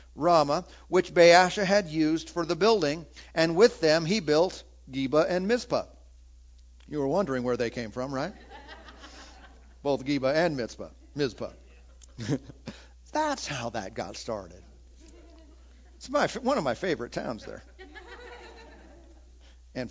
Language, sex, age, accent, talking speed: English, male, 50-69, American, 135 wpm